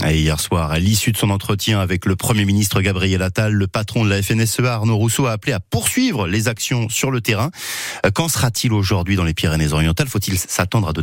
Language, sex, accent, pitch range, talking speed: French, male, French, 90-125 Hz, 210 wpm